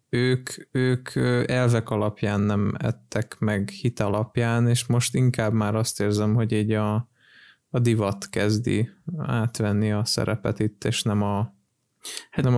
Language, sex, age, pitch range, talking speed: Hungarian, male, 20-39, 110-125 Hz, 140 wpm